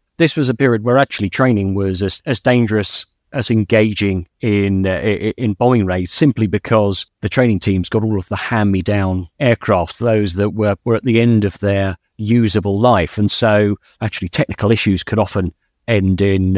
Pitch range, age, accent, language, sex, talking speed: 100-120 Hz, 40-59, British, English, male, 175 wpm